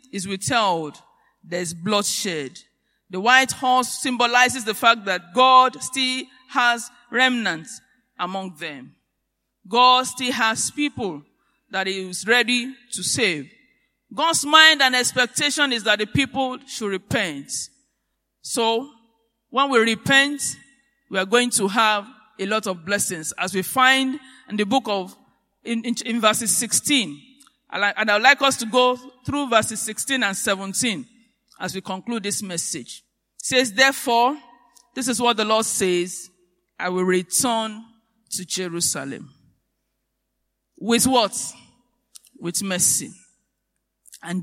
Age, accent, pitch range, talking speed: 50-69, Nigerian, 195-255 Hz, 130 wpm